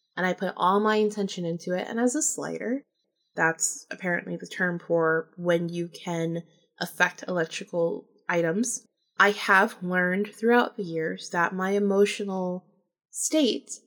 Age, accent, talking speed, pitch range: 20-39, American, 145 wpm, 180-215 Hz